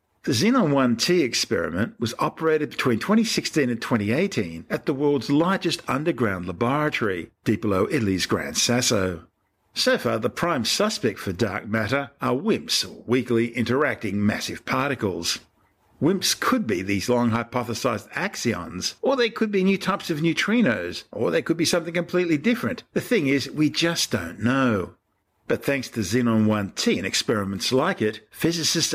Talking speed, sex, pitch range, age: 150 wpm, male, 110-160 Hz, 50-69